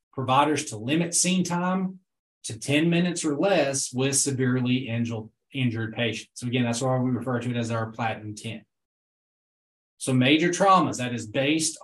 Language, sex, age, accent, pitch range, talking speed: English, male, 20-39, American, 115-150 Hz, 160 wpm